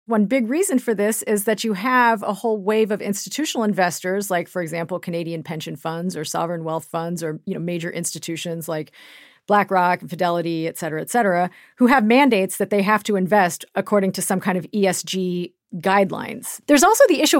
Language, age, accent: English, 40-59, American